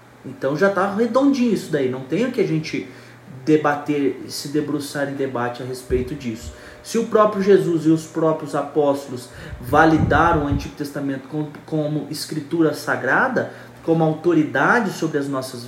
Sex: male